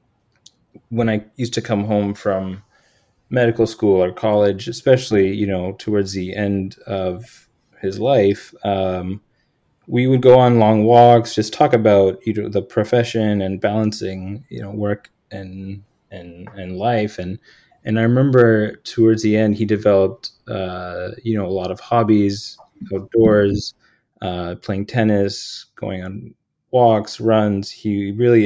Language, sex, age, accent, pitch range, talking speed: English, male, 20-39, American, 95-110 Hz, 145 wpm